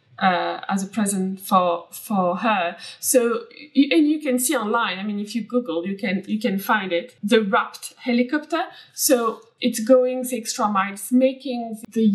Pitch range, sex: 195-250 Hz, female